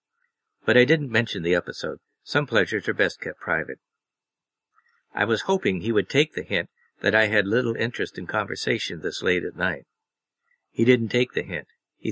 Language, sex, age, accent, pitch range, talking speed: English, male, 50-69, American, 100-145 Hz, 185 wpm